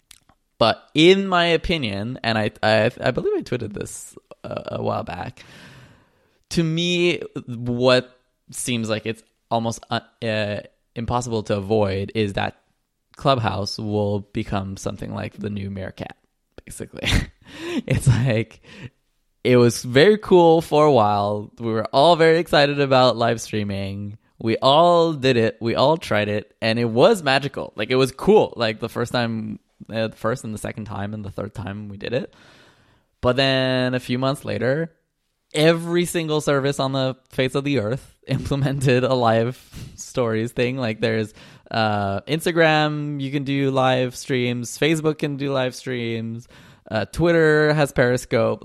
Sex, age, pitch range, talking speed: male, 20-39, 110-145 Hz, 155 wpm